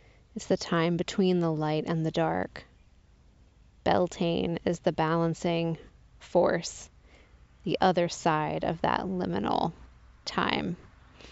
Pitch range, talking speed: 145-180 Hz, 110 wpm